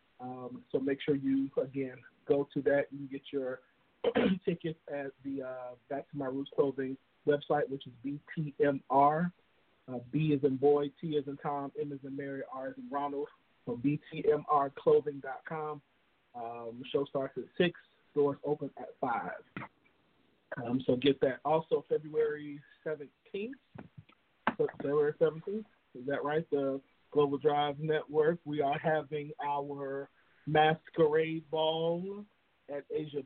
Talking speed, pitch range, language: 140 wpm, 140-160 Hz, English